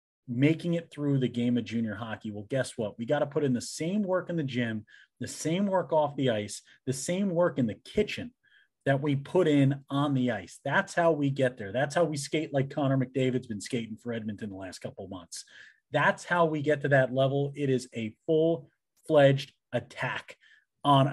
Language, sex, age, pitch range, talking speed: English, male, 30-49, 125-170 Hz, 215 wpm